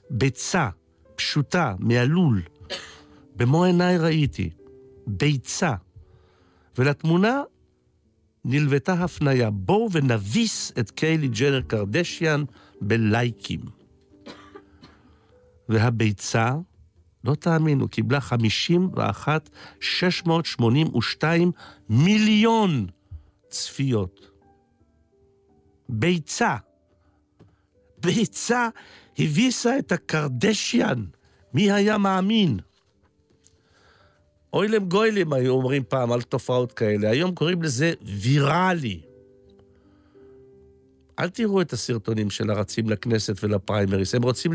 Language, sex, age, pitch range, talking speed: Hebrew, male, 60-79, 100-165 Hz, 75 wpm